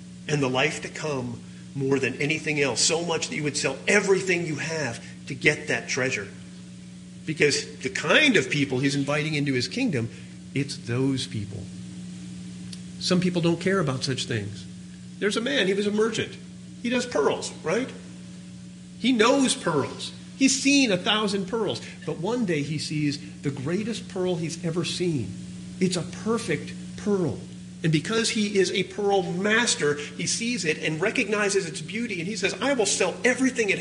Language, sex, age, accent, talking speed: English, male, 50-69, American, 175 wpm